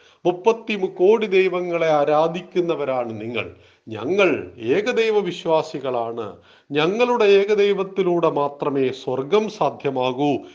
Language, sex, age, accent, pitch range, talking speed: Malayalam, male, 40-59, native, 145-205 Hz, 75 wpm